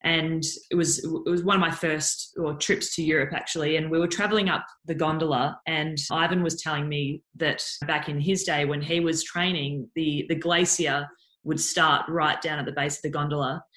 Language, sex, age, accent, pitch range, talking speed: English, female, 20-39, Australian, 150-175 Hz, 210 wpm